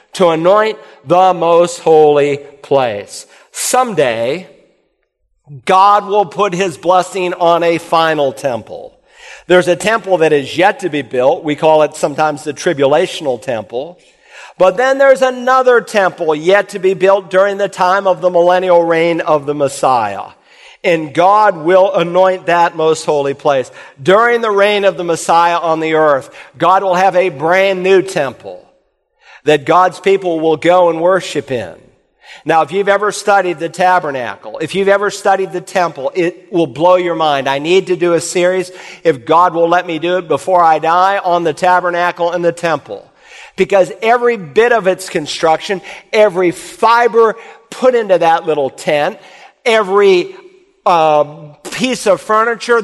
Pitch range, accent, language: 165-200 Hz, American, English